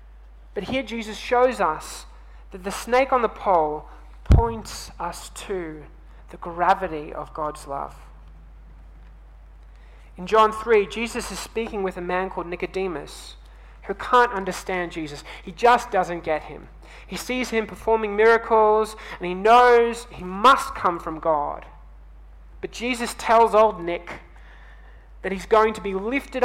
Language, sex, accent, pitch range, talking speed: English, male, Australian, 150-220 Hz, 145 wpm